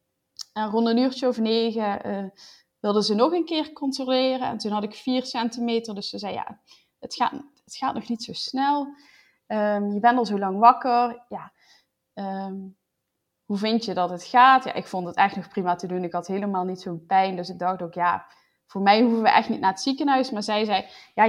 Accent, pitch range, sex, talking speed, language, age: Dutch, 195-250 Hz, female, 225 wpm, Dutch, 20-39